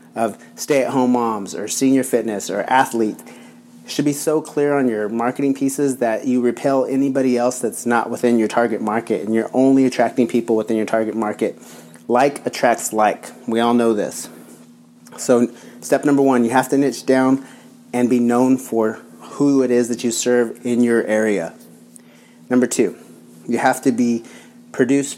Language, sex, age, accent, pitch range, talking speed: English, male, 30-49, American, 115-135 Hz, 170 wpm